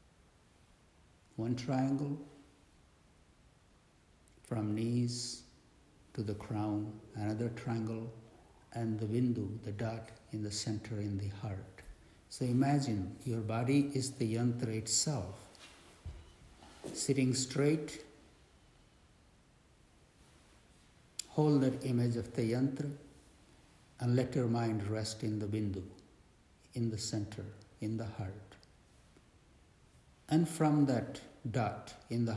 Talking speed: 105 wpm